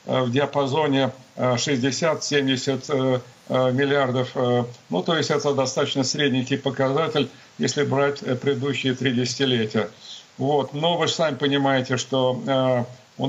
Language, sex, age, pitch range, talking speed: Russian, male, 50-69, 130-145 Hz, 110 wpm